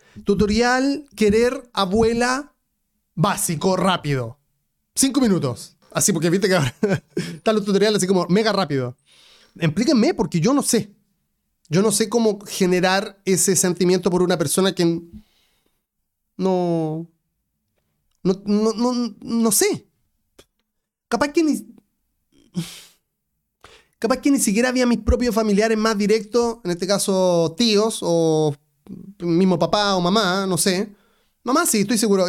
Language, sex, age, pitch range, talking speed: Spanish, male, 30-49, 170-230 Hz, 130 wpm